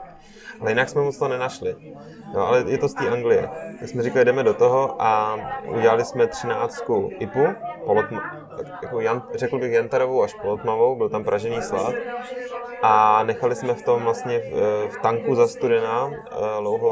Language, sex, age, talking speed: Czech, male, 20-39, 165 wpm